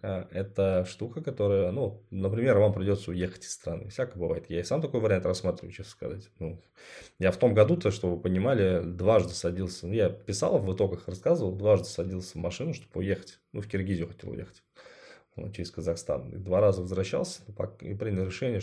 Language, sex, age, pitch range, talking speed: Russian, male, 20-39, 90-105 Hz, 185 wpm